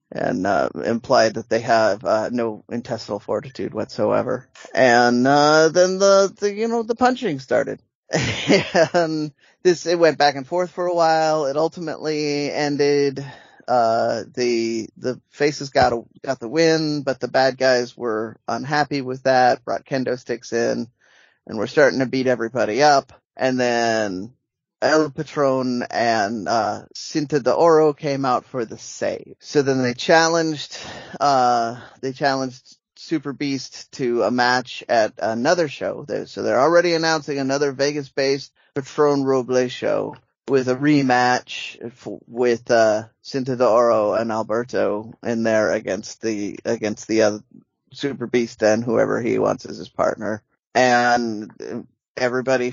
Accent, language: American, English